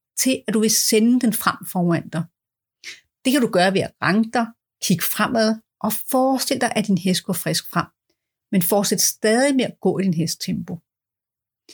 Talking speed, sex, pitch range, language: 190 wpm, female, 180-230 Hz, Danish